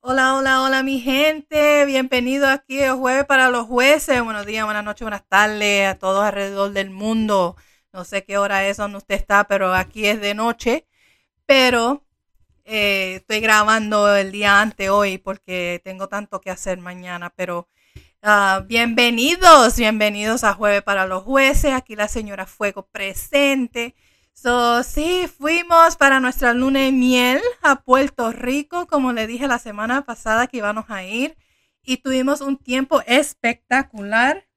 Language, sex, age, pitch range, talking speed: Spanish, female, 30-49, 205-265 Hz, 155 wpm